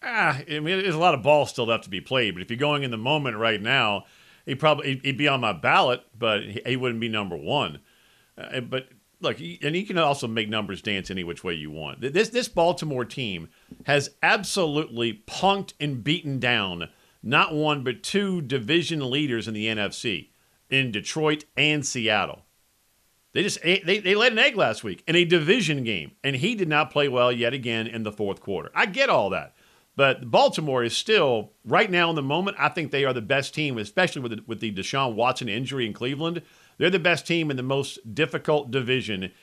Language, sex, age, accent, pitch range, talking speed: English, male, 50-69, American, 115-155 Hz, 210 wpm